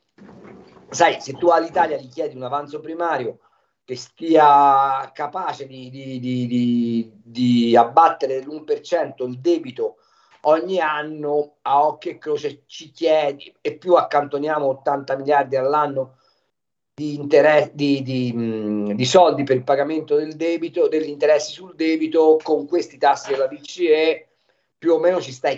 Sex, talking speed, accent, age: male, 145 wpm, native, 50-69